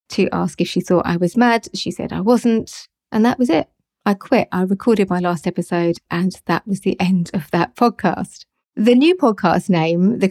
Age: 30-49